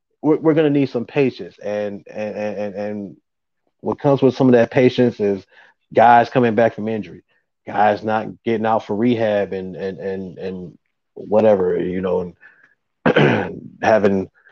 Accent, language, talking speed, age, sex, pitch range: American, English, 155 wpm, 30-49, male, 105-120 Hz